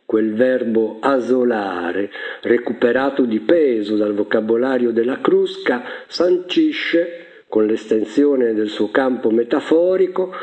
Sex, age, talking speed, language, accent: male, 50-69, 100 wpm, Italian, native